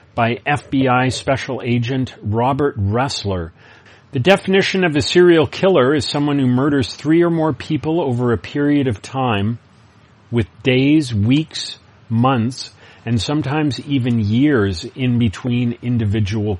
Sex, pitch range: male, 110-140 Hz